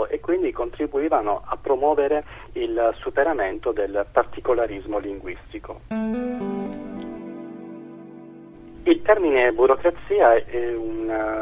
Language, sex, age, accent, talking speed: Italian, male, 40-59, native, 80 wpm